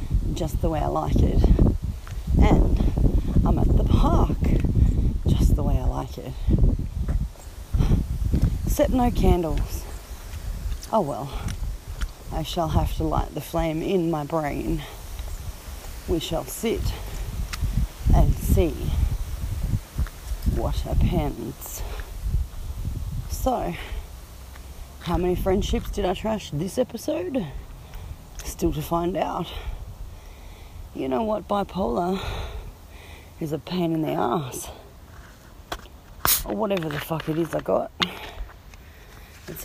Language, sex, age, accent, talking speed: English, female, 40-59, Australian, 105 wpm